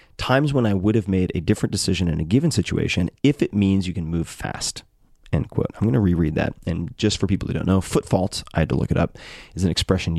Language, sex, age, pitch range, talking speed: English, male, 30-49, 85-105 Hz, 265 wpm